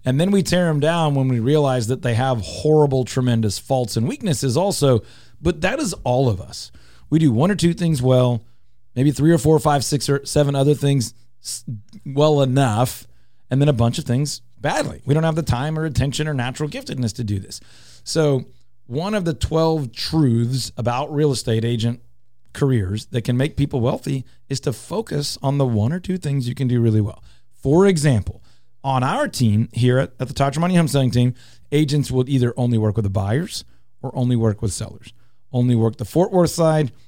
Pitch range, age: 115-150 Hz, 30-49